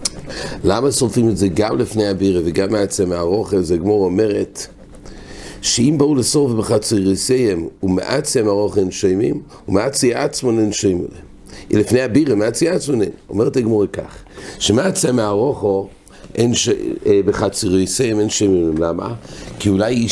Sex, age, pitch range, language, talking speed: male, 60-79, 100-125 Hz, English, 85 wpm